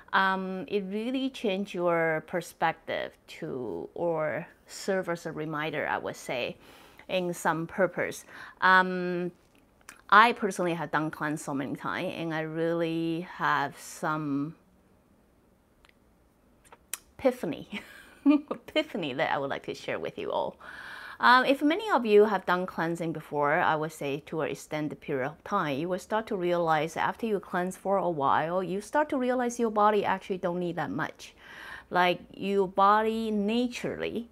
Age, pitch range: 30-49, 155-210 Hz